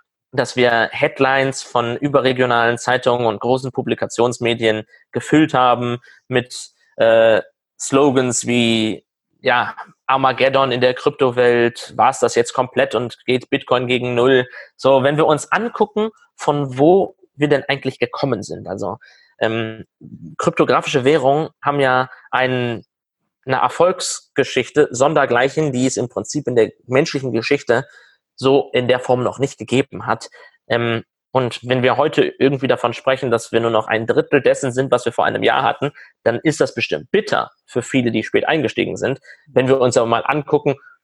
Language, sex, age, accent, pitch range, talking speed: German, male, 20-39, German, 120-145 Hz, 155 wpm